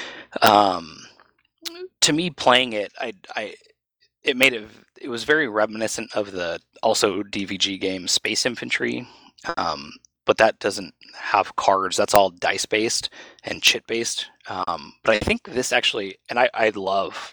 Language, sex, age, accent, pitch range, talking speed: English, male, 20-39, American, 95-120 Hz, 150 wpm